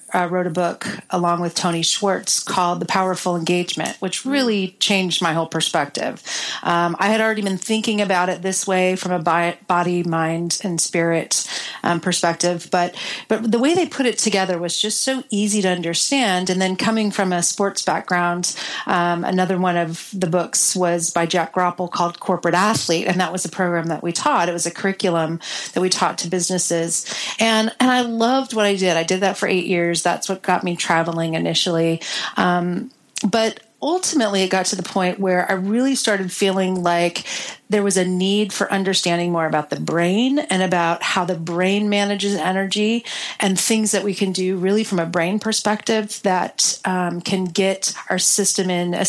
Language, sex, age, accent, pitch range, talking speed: English, female, 40-59, American, 175-205 Hz, 190 wpm